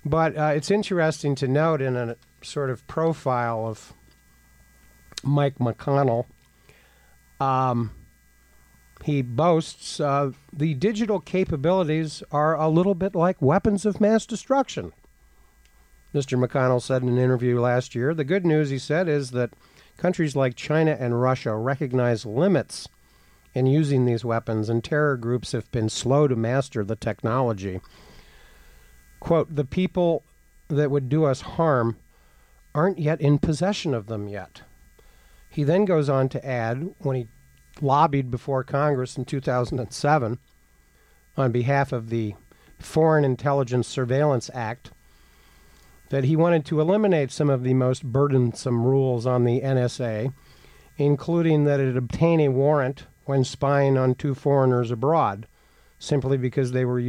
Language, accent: English, American